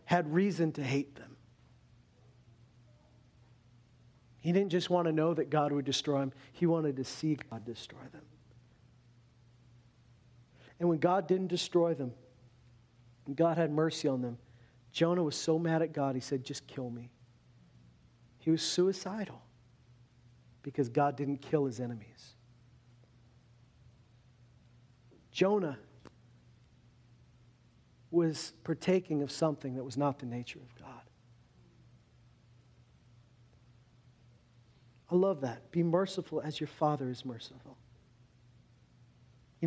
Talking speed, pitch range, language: 120 wpm, 120-150 Hz, English